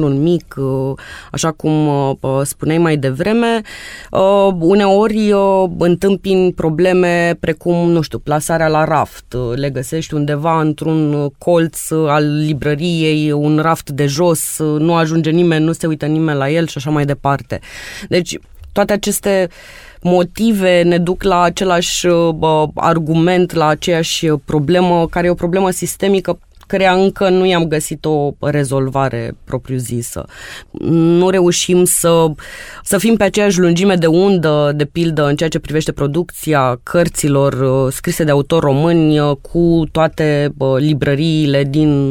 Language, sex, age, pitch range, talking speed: Romanian, female, 20-39, 140-170 Hz, 130 wpm